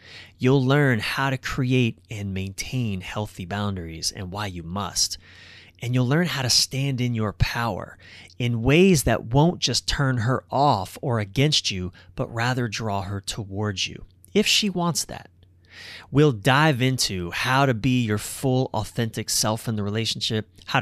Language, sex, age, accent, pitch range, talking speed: English, male, 30-49, American, 100-130 Hz, 165 wpm